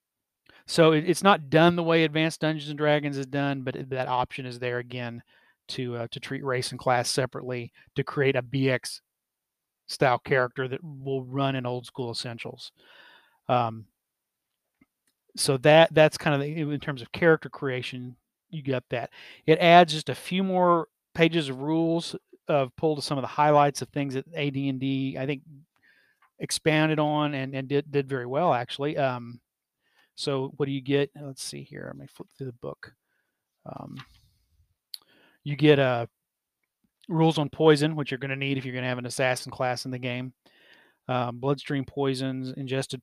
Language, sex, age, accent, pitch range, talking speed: English, male, 40-59, American, 125-150 Hz, 175 wpm